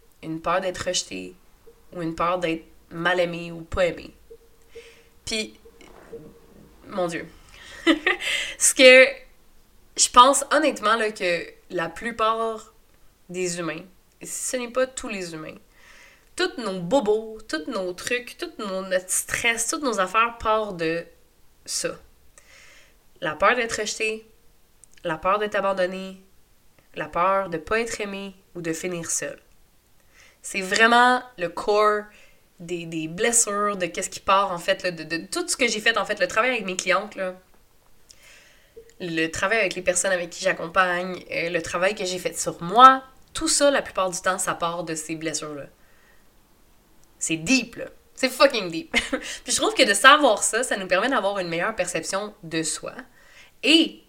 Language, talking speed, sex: French, 165 wpm, female